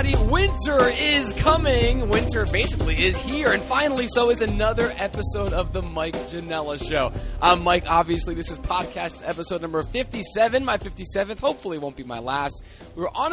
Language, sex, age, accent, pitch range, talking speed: English, male, 20-39, American, 155-205 Hz, 165 wpm